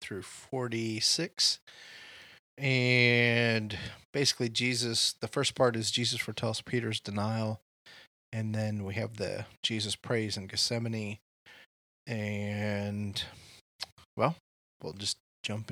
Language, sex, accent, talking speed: English, male, American, 105 wpm